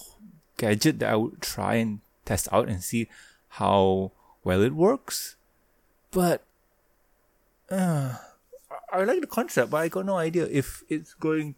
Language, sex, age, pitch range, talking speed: English, male, 20-39, 110-160 Hz, 145 wpm